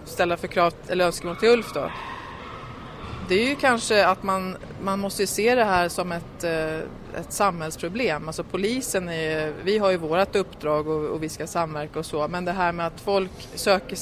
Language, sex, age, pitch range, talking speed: Swedish, female, 30-49, 165-195 Hz, 195 wpm